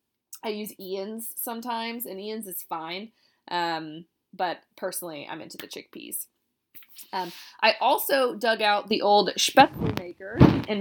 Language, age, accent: English, 20-39, American